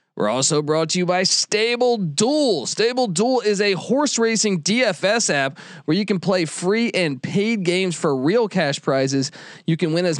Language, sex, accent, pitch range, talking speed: English, male, American, 145-195 Hz, 190 wpm